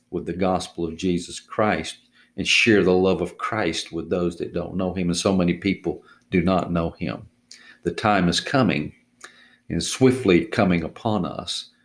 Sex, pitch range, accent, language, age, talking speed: male, 90-105 Hz, American, English, 50-69, 175 wpm